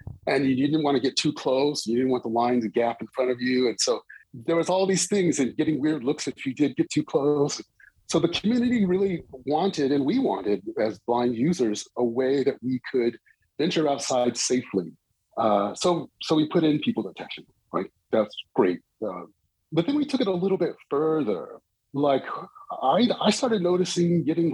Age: 30-49